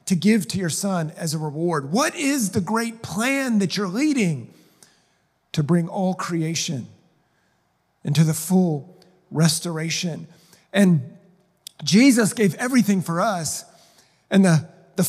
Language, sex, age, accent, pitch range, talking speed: English, male, 40-59, American, 150-195 Hz, 130 wpm